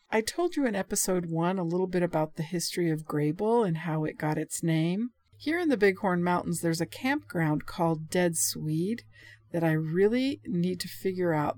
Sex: female